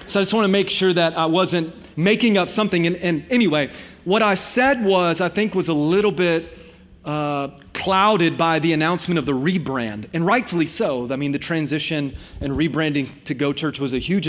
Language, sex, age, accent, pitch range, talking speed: English, male, 30-49, American, 150-195 Hz, 205 wpm